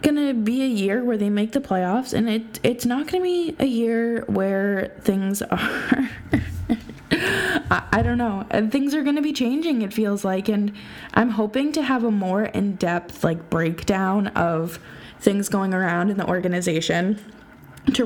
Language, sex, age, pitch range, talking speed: English, female, 20-39, 190-235 Hz, 165 wpm